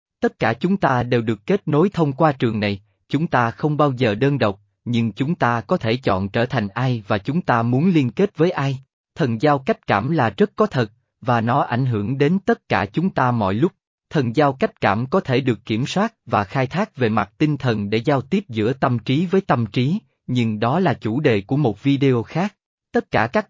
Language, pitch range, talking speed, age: Vietnamese, 115-170 Hz, 235 wpm, 20-39